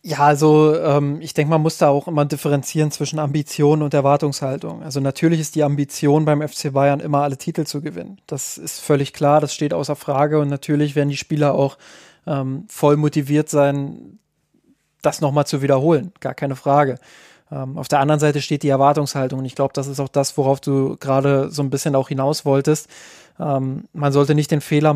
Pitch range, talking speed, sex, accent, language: 140-150 Hz, 200 wpm, male, German, German